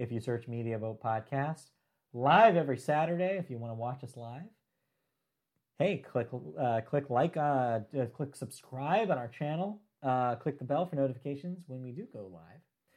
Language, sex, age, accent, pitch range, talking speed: English, male, 30-49, American, 115-170 Hz, 175 wpm